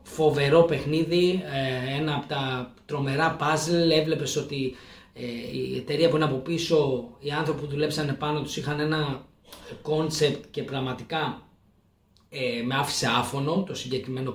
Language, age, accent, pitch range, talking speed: Greek, 20-39, native, 135-170 Hz, 130 wpm